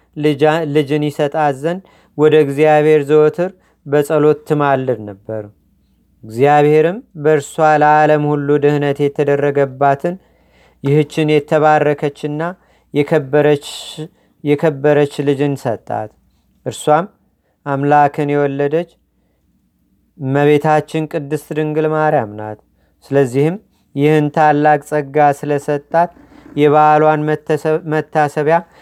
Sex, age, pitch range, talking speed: male, 40-59, 140-155 Hz, 70 wpm